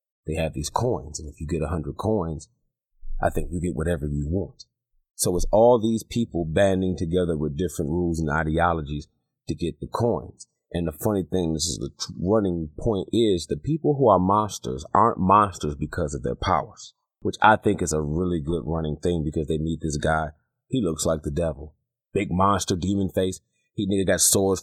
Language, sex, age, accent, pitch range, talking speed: English, male, 30-49, American, 80-110 Hz, 195 wpm